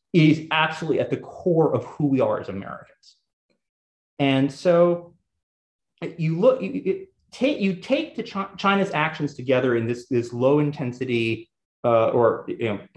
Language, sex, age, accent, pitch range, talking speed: English, male, 30-49, American, 120-180 Hz, 140 wpm